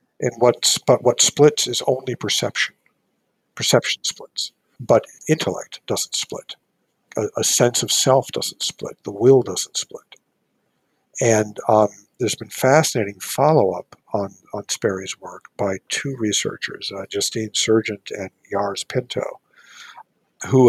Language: English